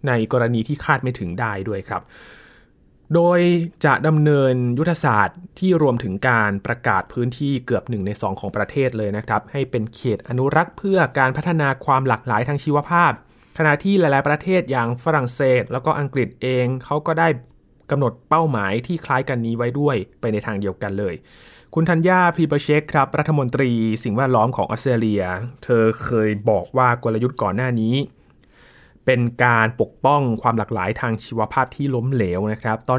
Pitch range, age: 110-145 Hz, 20-39